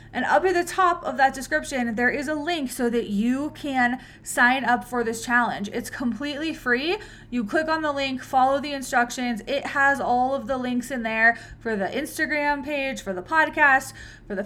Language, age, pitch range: English, 20-39, 220-270 Hz